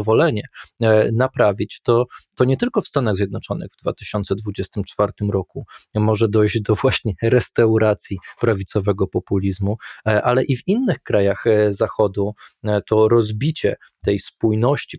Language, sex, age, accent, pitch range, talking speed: Polish, male, 20-39, native, 110-130 Hz, 115 wpm